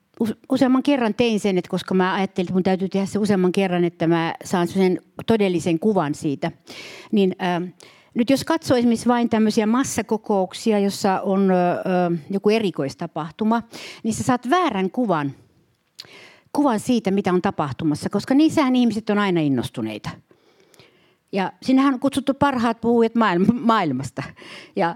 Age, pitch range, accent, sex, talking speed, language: 60-79, 165-235 Hz, native, female, 145 wpm, Finnish